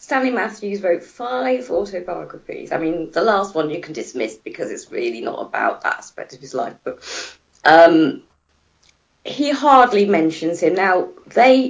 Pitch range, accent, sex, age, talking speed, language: 140-200 Hz, British, female, 40-59, 160 wpm, English